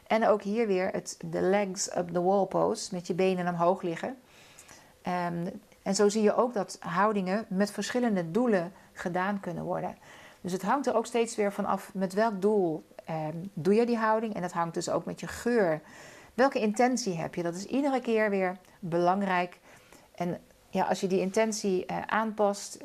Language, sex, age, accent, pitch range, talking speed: Dutch, female, 40-59, Dutch, 180-215 Hz, 180 wpm